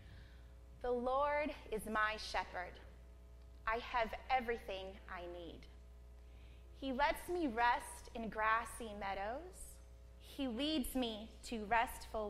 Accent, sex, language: American, female, English